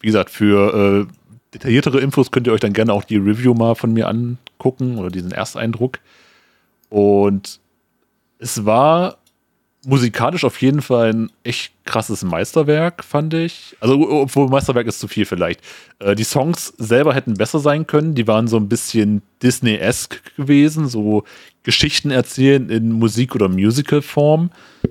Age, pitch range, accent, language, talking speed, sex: 30-49, 105-135 Hz, German, German, 155 wpm, male